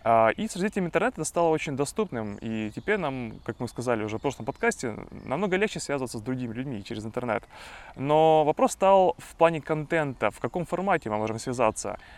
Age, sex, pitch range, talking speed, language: 20-39, male, 115-160 Hz, 185 wpm, Russian